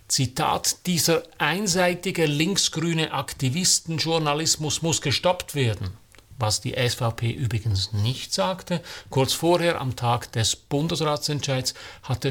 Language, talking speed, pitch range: German, 100 wpm, 110-145 Hz